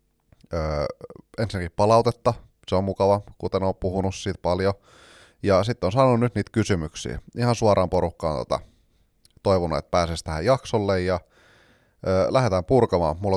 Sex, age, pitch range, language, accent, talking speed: male, 30-49, 90-110 Hz, Finnish, native, 145 wpm